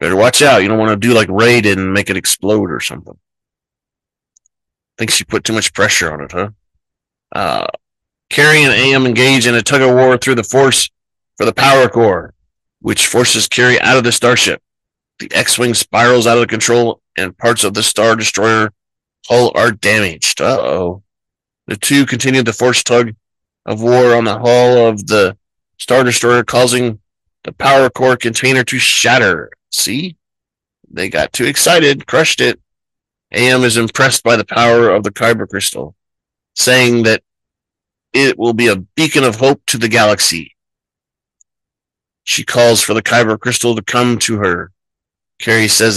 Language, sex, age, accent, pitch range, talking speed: English, male, 30-49, American, 110-130 Hz, 170 wpm